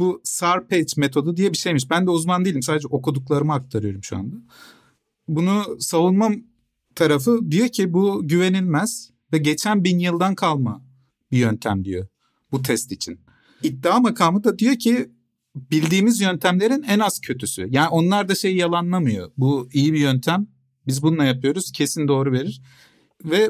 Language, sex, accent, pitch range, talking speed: Turkish, male, native, 135-185 Hz, 150 wpm